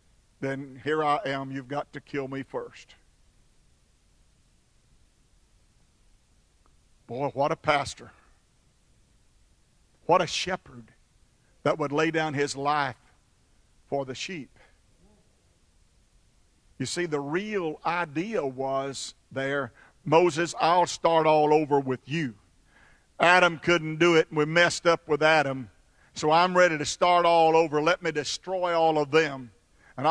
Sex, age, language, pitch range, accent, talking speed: male, 50-69, English, 135-165 Hz, American, 130 wpm